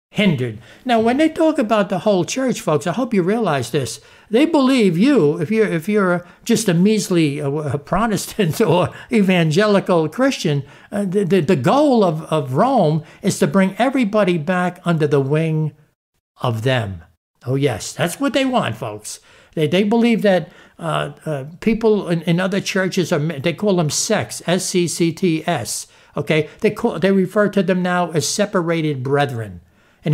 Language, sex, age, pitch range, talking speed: English, male, 60-79, 150-205 Hz, 175 wpm